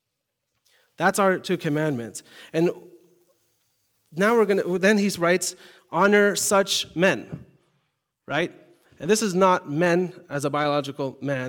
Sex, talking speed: male, 130 wpm